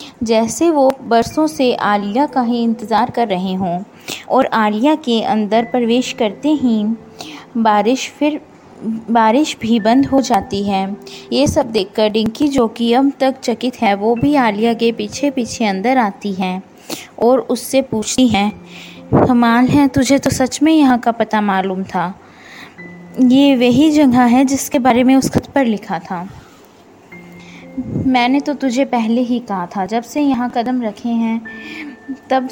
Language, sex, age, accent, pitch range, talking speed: Hindi, female, 20-39, native, 215-260 Hz, 155 wpm